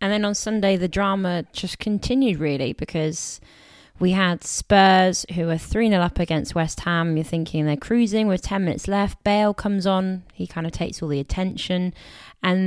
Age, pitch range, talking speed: 20-39, 150-185 Hz, 185 wpm